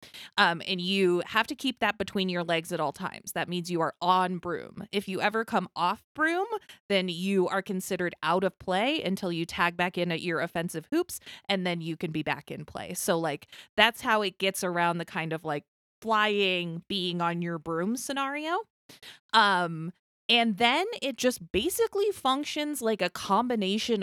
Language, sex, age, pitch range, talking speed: English, female, 20-39, 170-225 Hz, 190 wpm